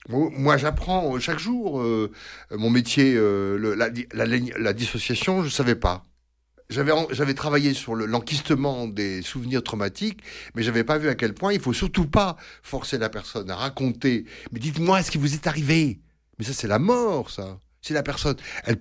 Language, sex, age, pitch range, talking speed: French, male, 60-79, 110-155 Hz, 190 wpm